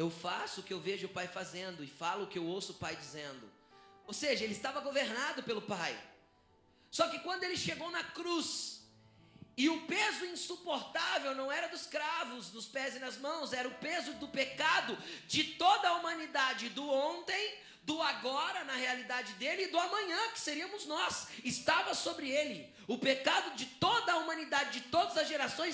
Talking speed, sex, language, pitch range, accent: 185 wpm, male, Portuguese, 190-320 Hz, Brazilian